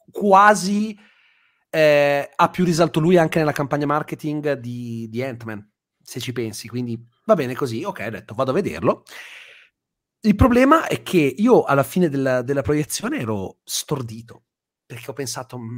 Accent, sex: native, male